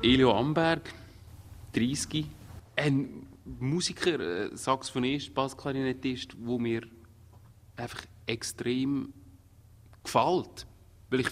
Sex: male